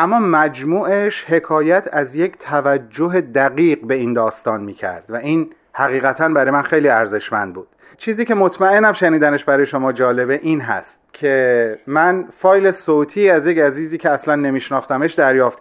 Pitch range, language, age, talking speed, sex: 150-195 Hz, Persian, 30-49, 155 wpm, male